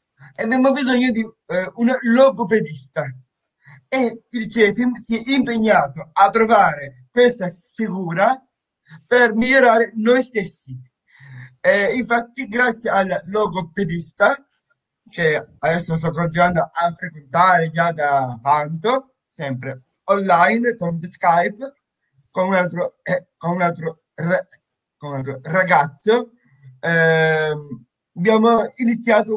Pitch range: 160-225 Hz